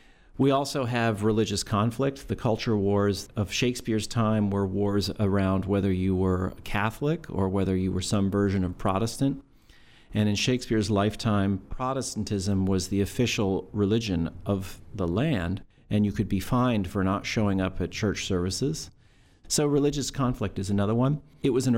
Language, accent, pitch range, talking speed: English, American, 100-125 Hz, 165 wpm